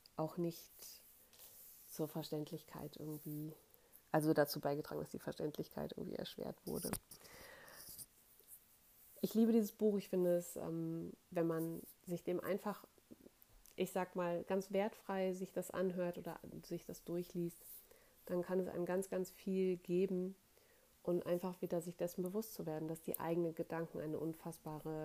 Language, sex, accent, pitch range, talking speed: German, female, German, 160-190 Hz, 145 wpm